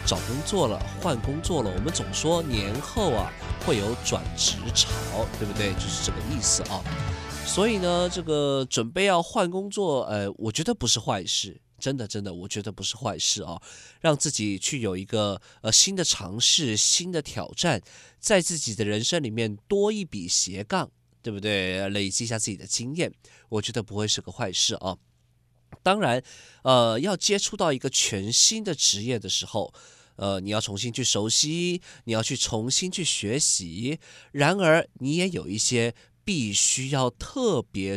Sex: male